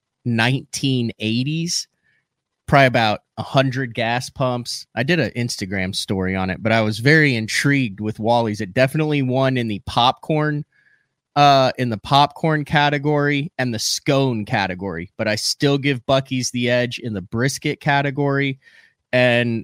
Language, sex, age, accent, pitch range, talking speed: English, male, 20-39, American, 110-140 Hz, 145 wpm